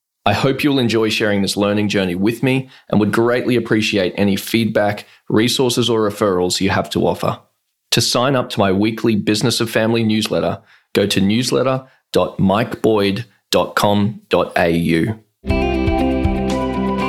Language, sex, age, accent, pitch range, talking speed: English, male, 20-39, Australian, 95-115 Hz, 125 wpm